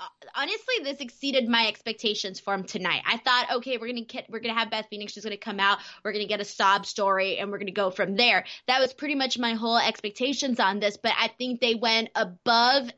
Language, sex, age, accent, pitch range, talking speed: English, female, 20-39, American, 220-275 Hz, 230 wpm